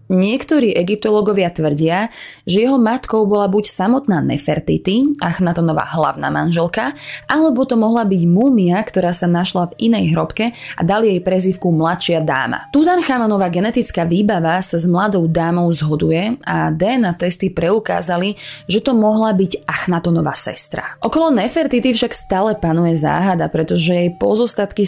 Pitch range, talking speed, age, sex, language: 170-220 Hz, 135 wpm, 20-39, female, Slovak